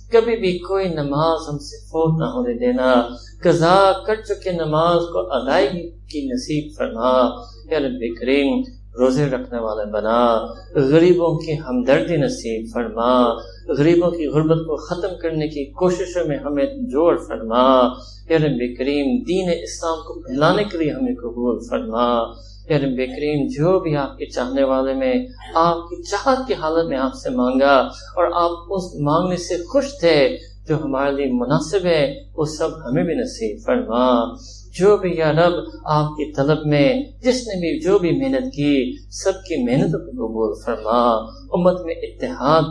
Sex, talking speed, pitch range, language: male, 150 wpm, 125-170 Hz, English